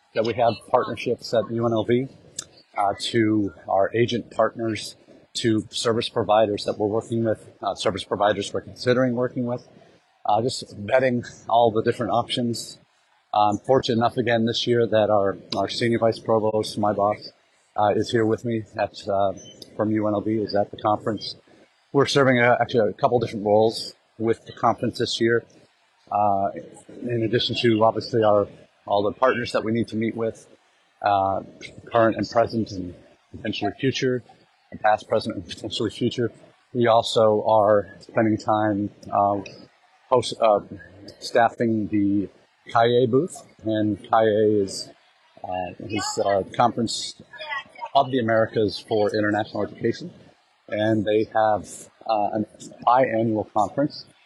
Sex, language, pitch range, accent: male, English, 105-120 Hz, American